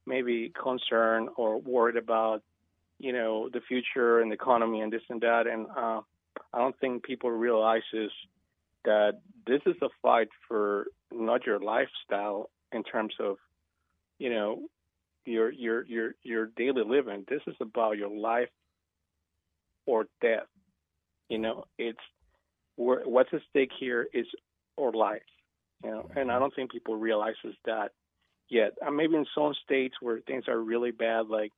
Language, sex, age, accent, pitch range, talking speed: English, male, 40-59, American, 100-125 Hz, 155 wpm